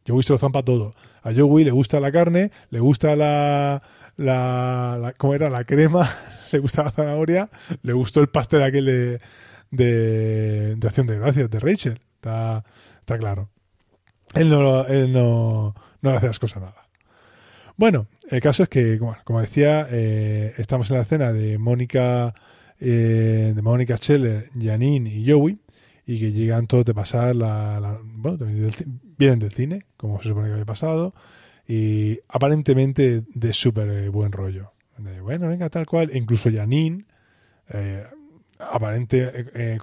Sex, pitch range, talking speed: male, 110-140 Hz, 160 wpm